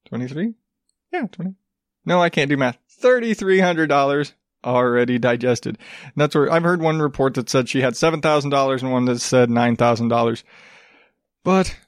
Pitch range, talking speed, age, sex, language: 130-165 Hz, 145 wpm, 20-39, male, English